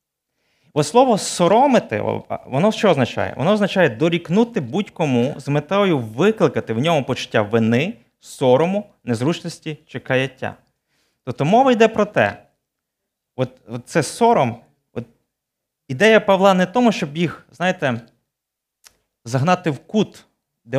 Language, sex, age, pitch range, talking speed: Ukrainian, male, 20-39, 125-170 Hz, 120 wpm